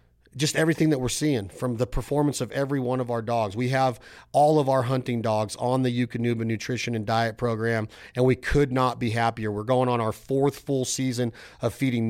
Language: English